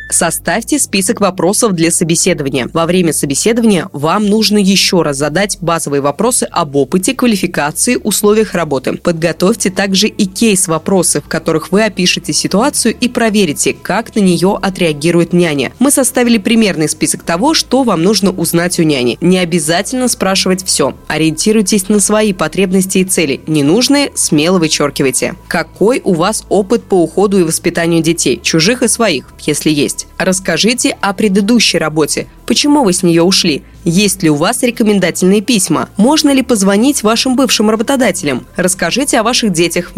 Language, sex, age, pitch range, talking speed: Russian, female, 20-39, 170-225 Hz, 150 wpm